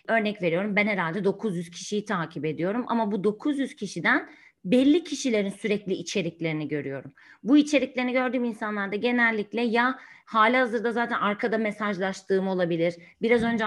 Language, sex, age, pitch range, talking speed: Turkish, female, 30-49, 195-255 Hz, 135 wpm